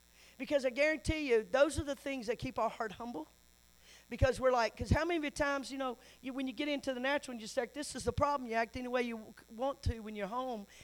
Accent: American